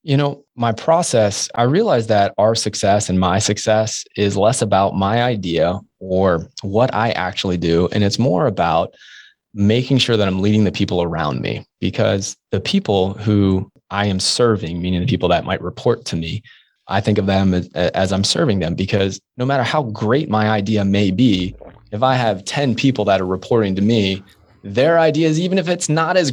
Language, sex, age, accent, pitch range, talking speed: English, male, 20-39, American, 95-115 Hz, 195 wpm